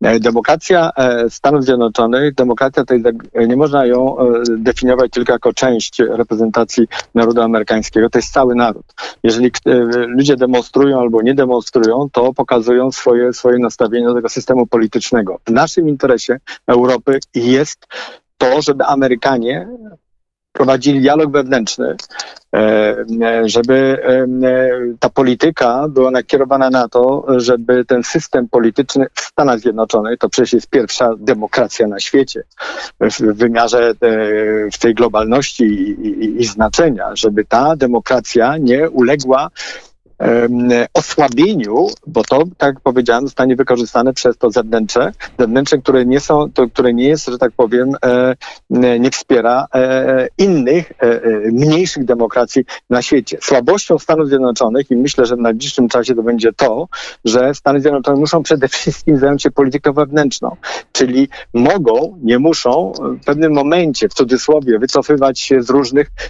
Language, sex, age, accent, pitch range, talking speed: Polish, male, 50-69, native, 120-140 Hz, 130 wpm